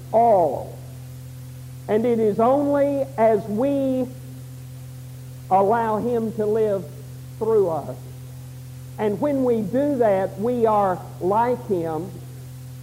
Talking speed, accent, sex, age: 105 wpm, American, male, 50-69